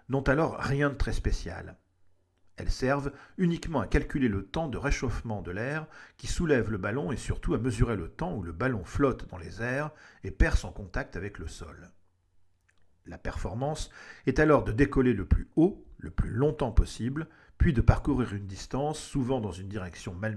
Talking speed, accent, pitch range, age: 190 wpm, French, 90-130 Hz, 50-69